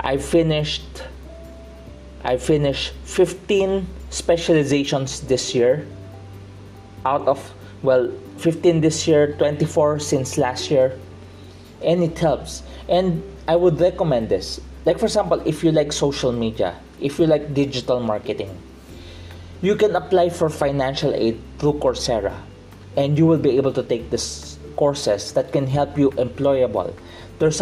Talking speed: 135 wpm